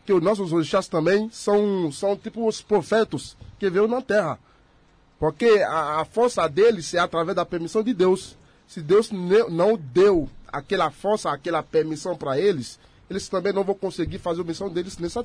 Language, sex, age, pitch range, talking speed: Portuguese, male, 30-49, 165-215 Hz, 180 wpm